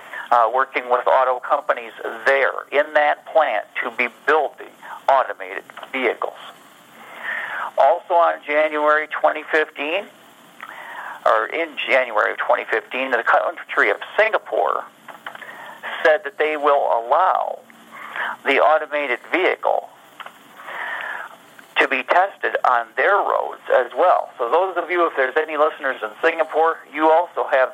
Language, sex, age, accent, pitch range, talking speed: English, male, 50-69, American, 130-155 Hz, 120 wpm